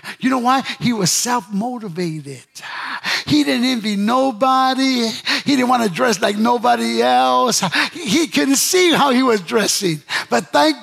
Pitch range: 150-240 Hz